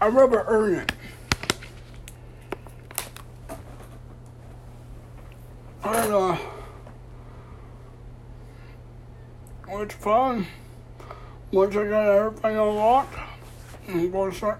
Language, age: English, 60-79